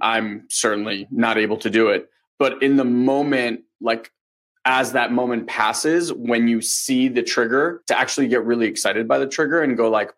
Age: 20-39